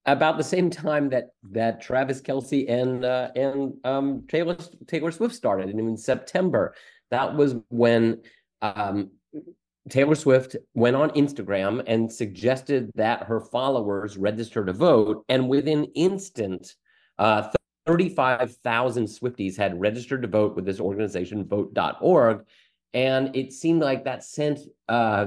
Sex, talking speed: male, 135 wpm